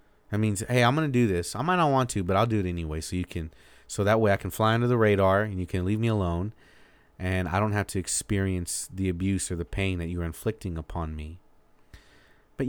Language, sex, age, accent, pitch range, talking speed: English, male, 30-49, American, 90-120 Hz, 255 wpm